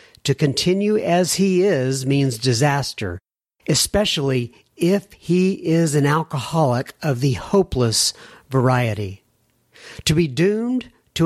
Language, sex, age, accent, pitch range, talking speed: English, male, 50-69, American, 130-165 Hz, 110 wpm